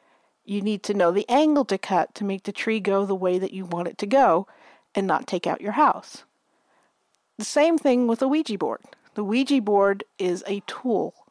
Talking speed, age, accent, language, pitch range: 210 wpm, 50-69, American, English, 185-235 Hz